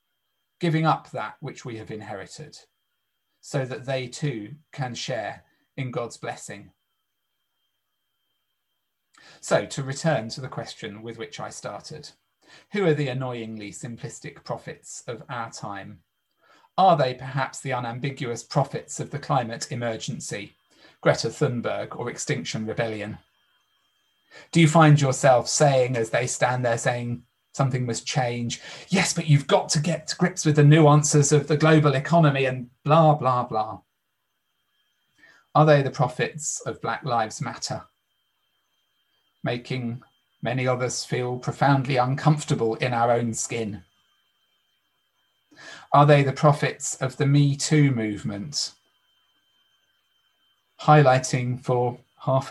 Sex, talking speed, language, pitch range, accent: male, 130 wpm, English, 120-150 Hz, British